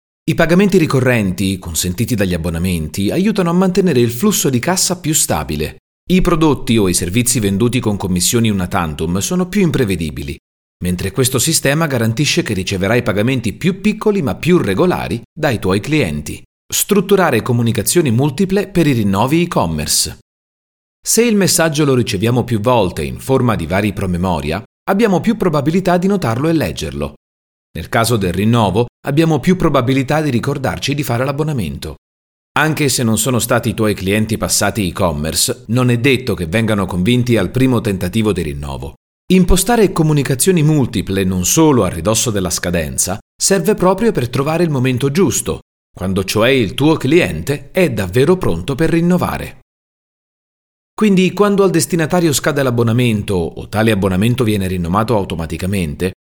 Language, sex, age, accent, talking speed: Italian, male, 40-59, native, 150 wpm